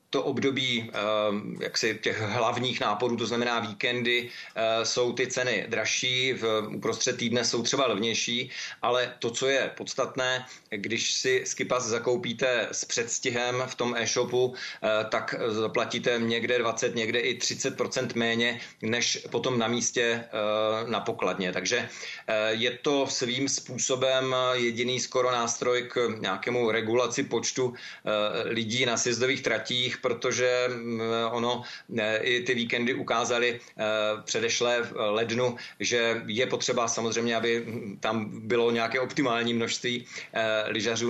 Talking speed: 125 wpm